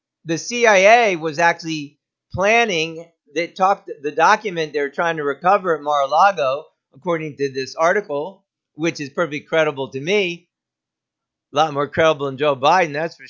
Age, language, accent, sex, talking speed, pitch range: 50-69, English, American, male, 150 wpm, 140-170 Hz